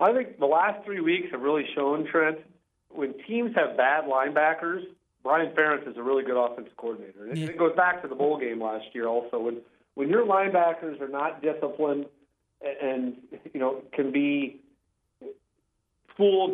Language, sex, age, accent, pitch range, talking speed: English, male, 40-59, American, 130-155 Hz, 175 wpm